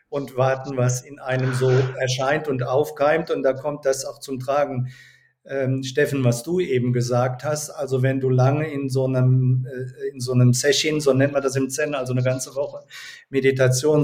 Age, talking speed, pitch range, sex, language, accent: 50-69, 195 wpm, 130-150 Hz, male, German, German